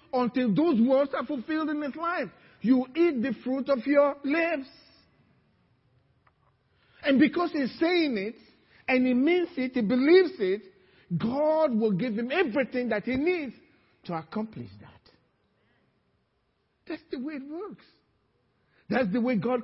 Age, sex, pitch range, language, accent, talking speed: 50-69, male, 215-290 Hz, English, Nigerian, 145 wpm